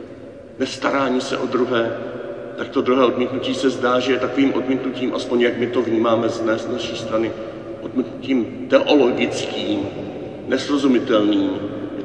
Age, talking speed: 40-59, 135 wpm